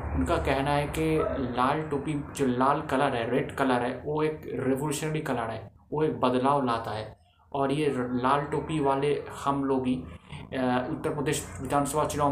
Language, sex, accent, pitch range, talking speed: Hindi, male, native, 125-145 Hz, 170 wpm